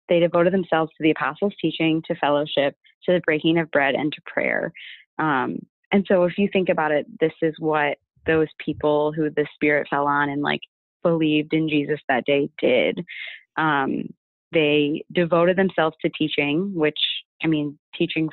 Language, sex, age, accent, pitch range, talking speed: English, female, 20-39, American, 150-175 Hz, 175 wpm